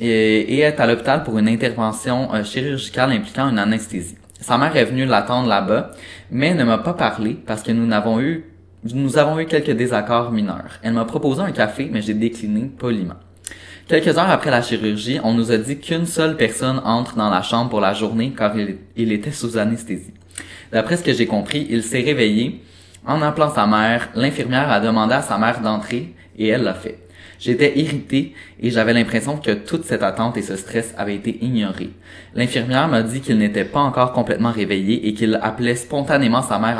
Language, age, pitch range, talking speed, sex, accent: French, 20-39, 105-125 Hz, 195 wpm, male, Canadian